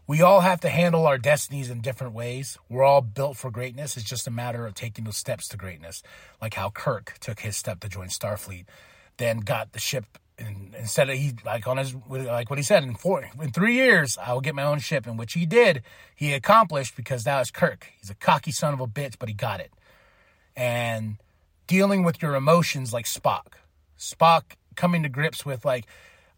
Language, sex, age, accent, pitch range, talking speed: English, male, 30-49, American, 110-145 Hz, 210 wpm